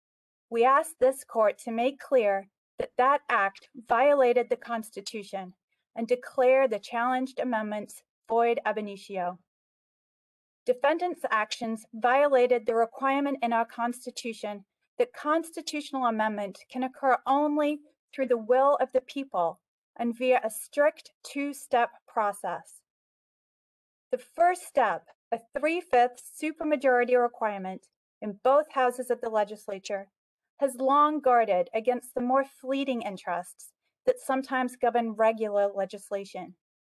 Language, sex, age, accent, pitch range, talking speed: English, female, 30-49, American, 220-275 Hz, 120 wpm